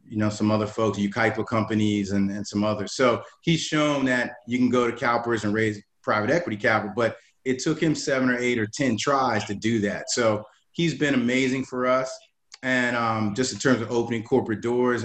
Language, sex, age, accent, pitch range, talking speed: English, male, 30-49, American, 110-125 Hz, 210 wpm